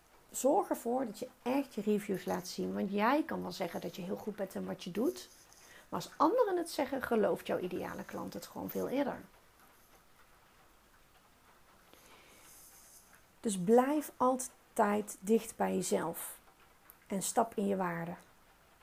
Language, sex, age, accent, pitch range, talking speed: Dutch, female, 40-59, Dutch, 185-240 Hz, 150 wpm